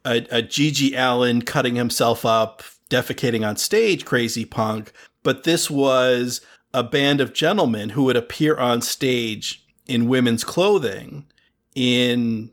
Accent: American